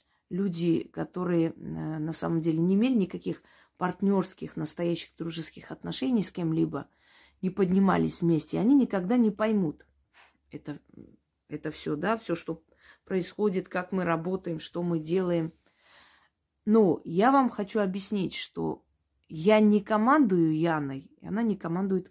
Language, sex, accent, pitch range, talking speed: Russian, female, native, 160-205 Hz, 130 wpm